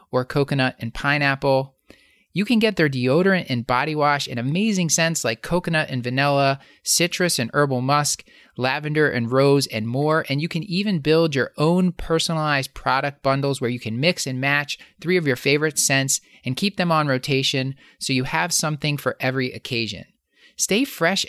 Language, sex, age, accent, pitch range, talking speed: English, male, 30-49, American, 130-165 Hz, 180 wpm